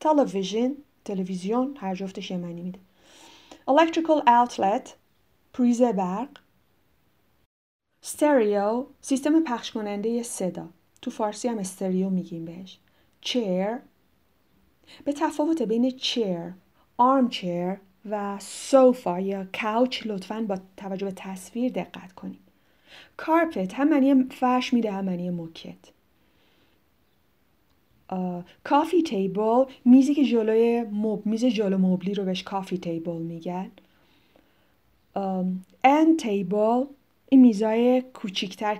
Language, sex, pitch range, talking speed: Persian, female, 190-255 Hz, 100 wpm